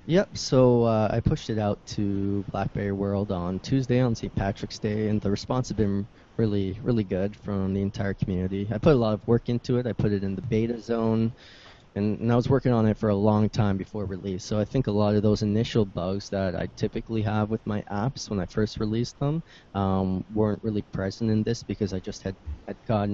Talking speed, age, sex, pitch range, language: 230 wpm, 20-39, male, 100-115 Hz, English